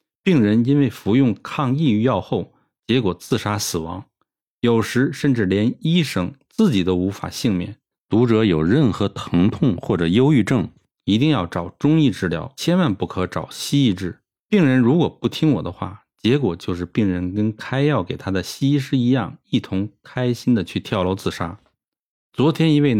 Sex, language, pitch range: male, Chinese, 95-130 Hz